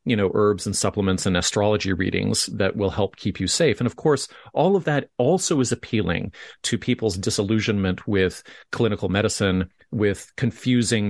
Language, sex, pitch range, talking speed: English, male, 100-120 Hz, 170 wpm